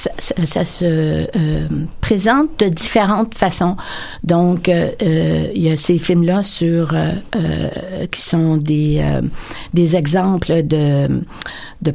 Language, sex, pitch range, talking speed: French, female, 170-215 Hz, 140 wpm